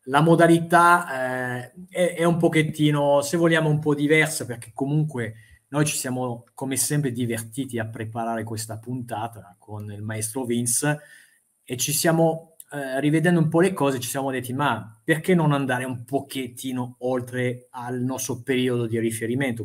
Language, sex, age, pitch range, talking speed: Italian, male, 30-49, 115-140 Hz, 160 wpm